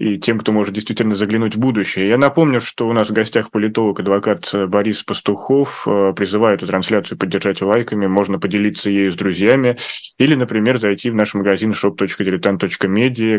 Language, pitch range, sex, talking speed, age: Russian, 100-115 Hz, male, 160 wpm, 20-39